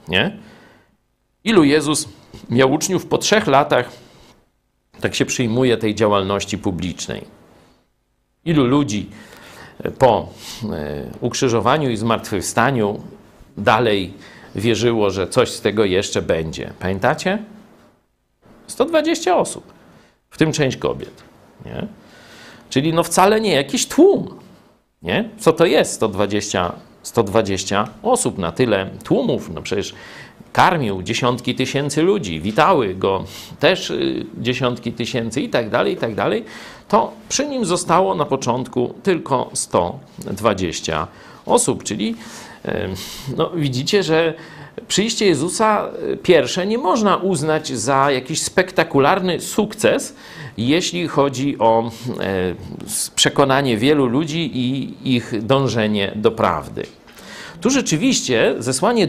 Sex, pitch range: male, 115-165 Hz